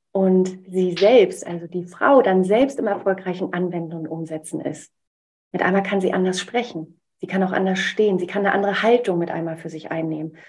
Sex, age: female, 30-49